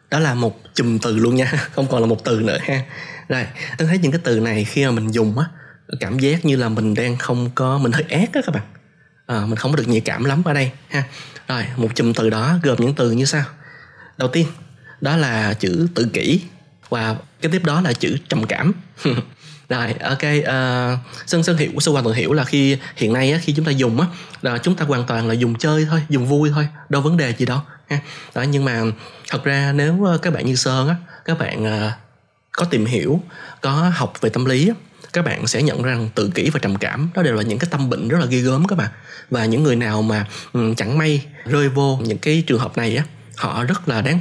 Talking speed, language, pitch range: 240 wpm, Vietnamese, 120-155 Hz